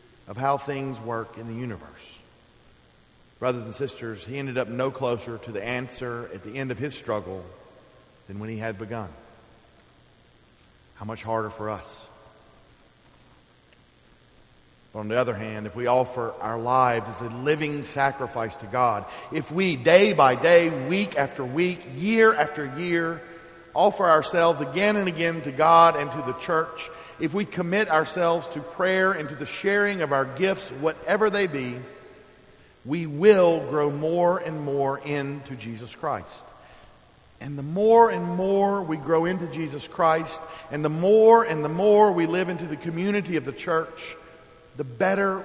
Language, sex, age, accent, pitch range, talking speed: English, male, 40-59, American, 120-165 Hz, 160 wpm